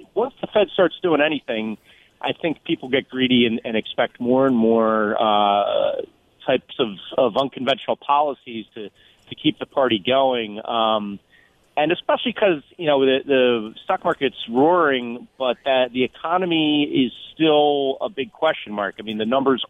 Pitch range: 115-150 Hz